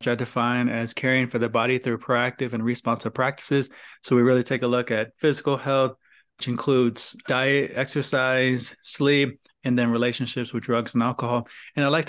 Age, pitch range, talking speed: 20-39, 120-140 Hz, 185 wpm